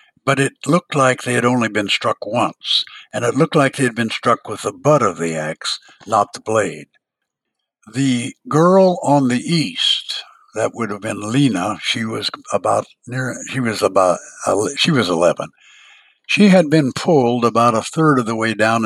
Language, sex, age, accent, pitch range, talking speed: English, male, 60-79, American, 110-150 Hz, 185 wpm